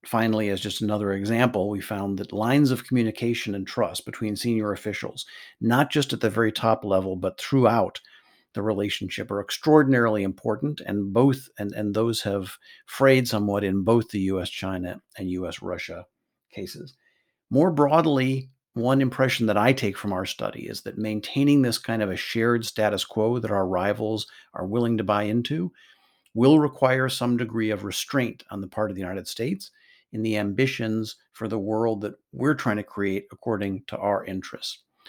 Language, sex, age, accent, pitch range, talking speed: English, male, 50-69, American, 105-130 Hz, 170 wpm